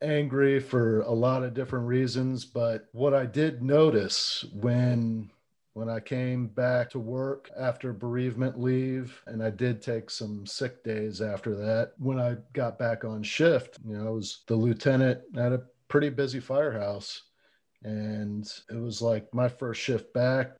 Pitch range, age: 105-130 Hz, 40-59